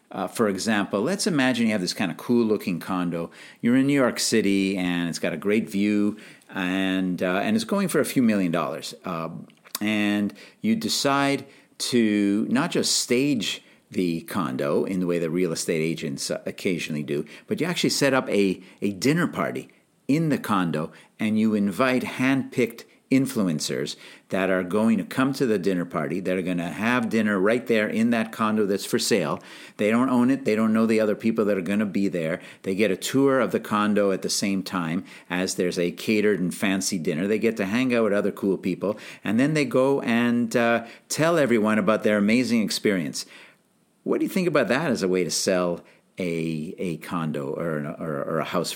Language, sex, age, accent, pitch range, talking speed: English, male, 50-69, American, 95-120 Hz, 205 wpm